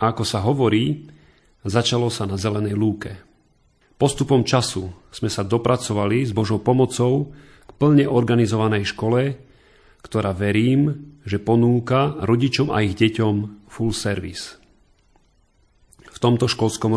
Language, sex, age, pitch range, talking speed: Slovak, male, 40-59, 100-120 Hz, 120 wpm